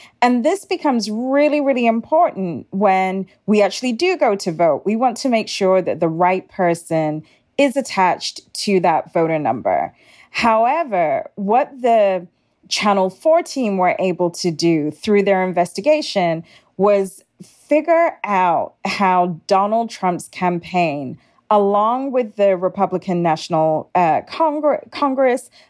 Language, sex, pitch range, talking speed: English, female, 175-225 Hz, 130 wpm